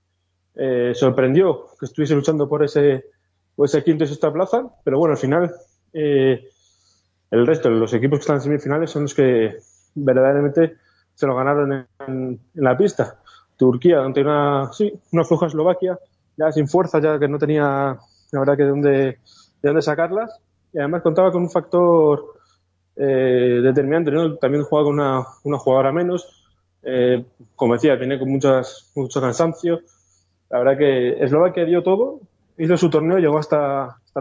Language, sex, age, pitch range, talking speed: Spanish, male, 20-39, 130-160 Hz, 165 wpm